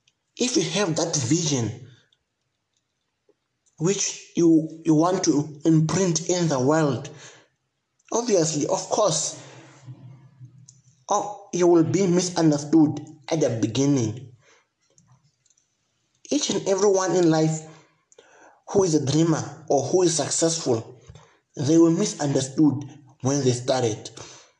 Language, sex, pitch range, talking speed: English, male, 145-185 Hz, 105 wpm